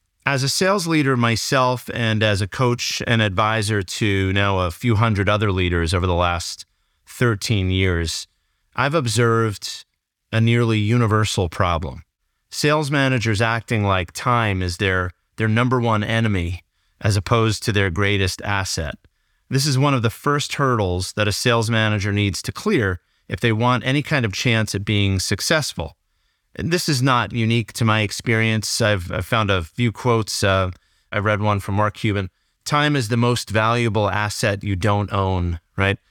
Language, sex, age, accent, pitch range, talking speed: English, male, 30-49, American, 95-120 Hz, 170 wpm